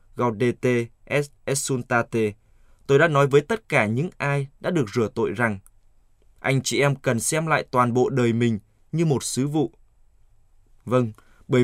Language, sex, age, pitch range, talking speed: Vietnamese, male, 20-39, 110-140 Hz, 160 wpm